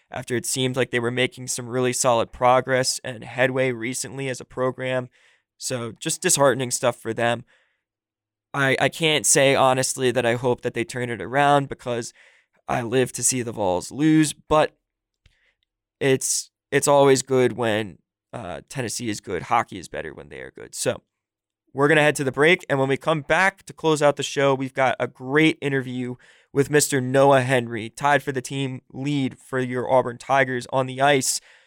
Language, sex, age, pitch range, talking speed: English, male, 20-39, 125-140 Hz, 190 wpm